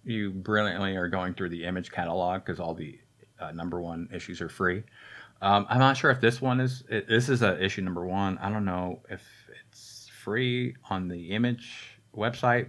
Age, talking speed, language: 30-49, 200 wpm, English